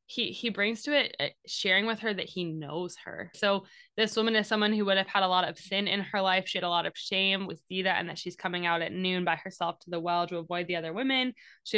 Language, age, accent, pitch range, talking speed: English, 10-29, American, 180-230 Hz, 280 wpm